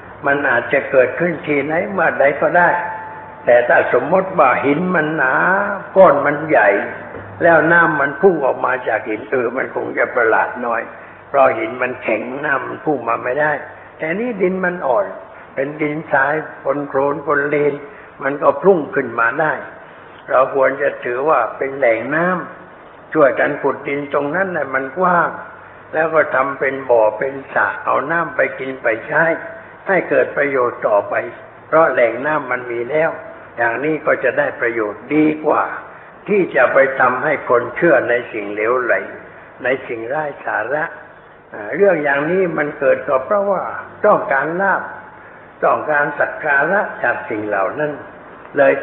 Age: 60-79